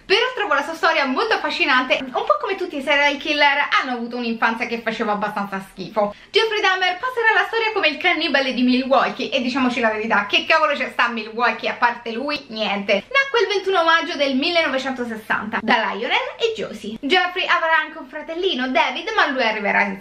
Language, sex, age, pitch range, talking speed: Italian, female, 20-39, 235-330 Hz, 190 wpm